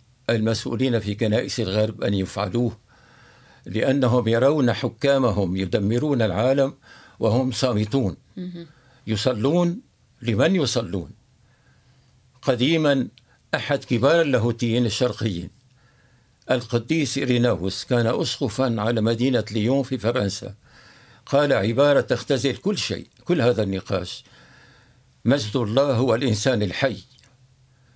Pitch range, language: 110-130 Hz, Arabic